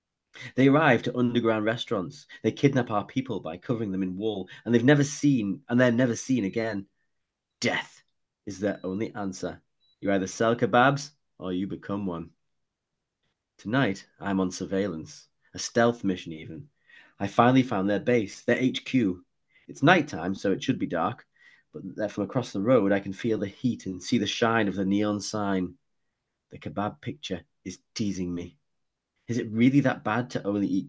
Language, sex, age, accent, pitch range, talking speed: English, male, 30-49, British, 100-135 Hz, 175 wpm